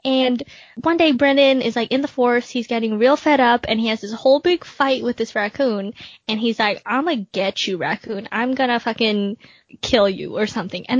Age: 10-29